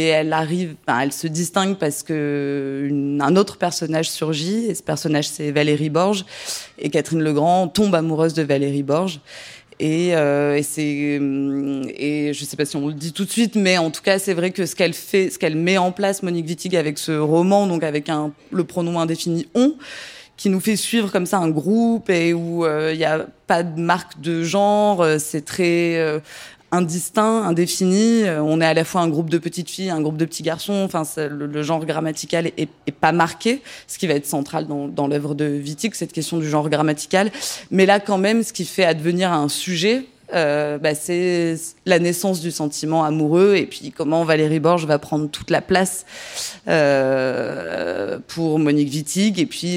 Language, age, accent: French, 20-39, French